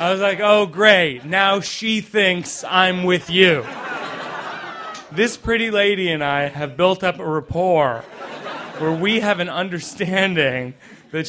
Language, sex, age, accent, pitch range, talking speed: English, male, 30-49, American, 165-200 Hz, 145 wpm